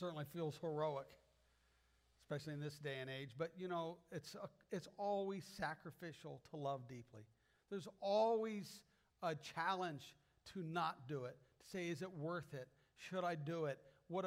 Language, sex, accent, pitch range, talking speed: English, male, American, 145-190 Hz, 165 wpm